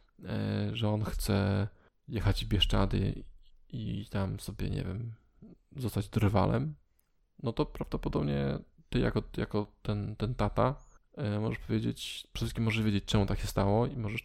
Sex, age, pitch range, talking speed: male, 20-39, 105-120 Hz, 145 wpm